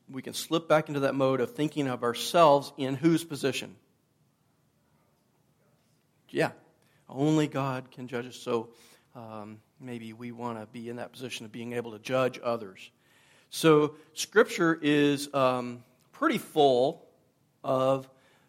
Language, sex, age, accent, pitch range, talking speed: English, male, 40-59, American, 130-155 Hz, 140 wpm